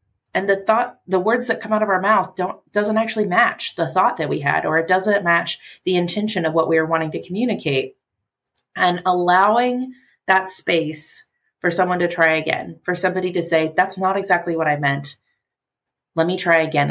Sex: female